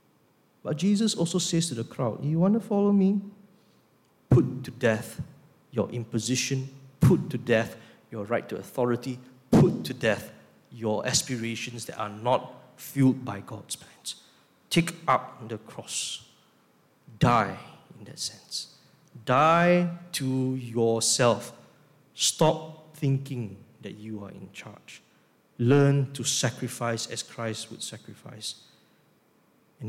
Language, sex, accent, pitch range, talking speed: English, male, Malaysian, 125-190 Hz, 125 wpm